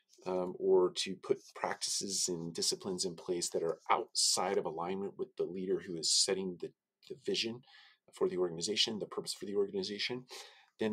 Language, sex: English, male